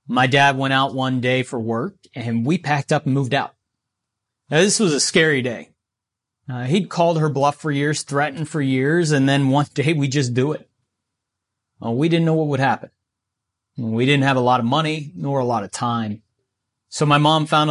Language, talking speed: English, 205 wpm